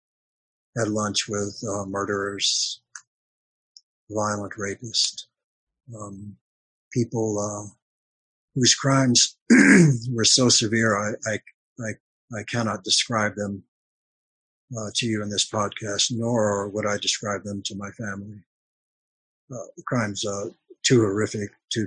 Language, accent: English, American